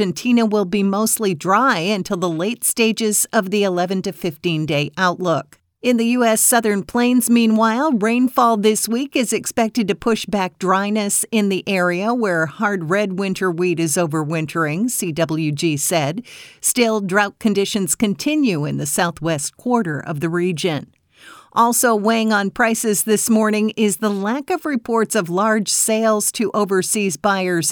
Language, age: English, 50-69